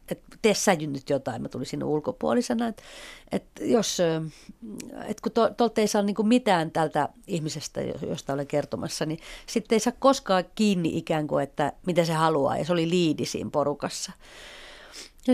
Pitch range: 170-230 Hz